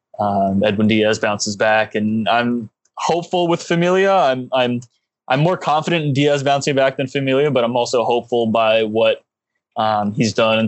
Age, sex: 20-39, male